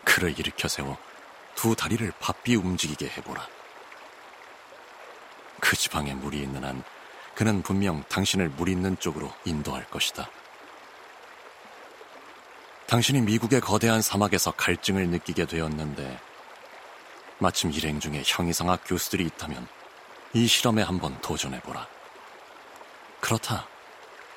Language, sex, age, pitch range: Korean, male, 40-59, 75-105 Hz